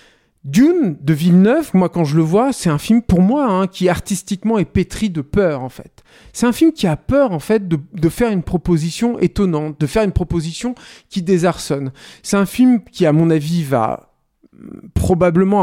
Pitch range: 150-195 Hz